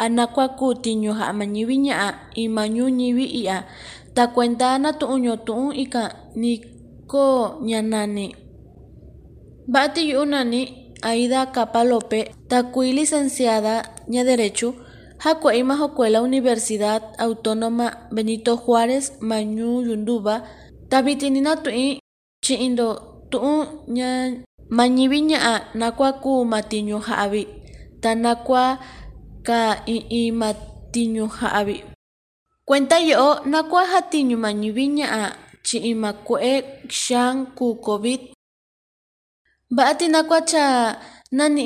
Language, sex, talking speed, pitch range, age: English, female, 85 wpm, 225-265 Hz, 20-39